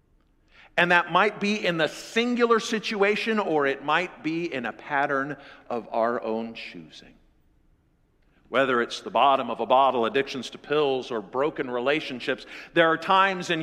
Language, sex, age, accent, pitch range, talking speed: English, male, 50-69, American, 140-210 Hz, 160 wpm